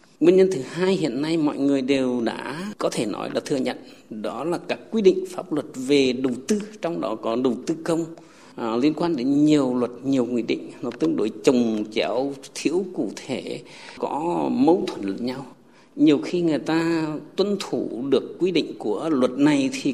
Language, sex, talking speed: Vietnamese, male, 200 wpm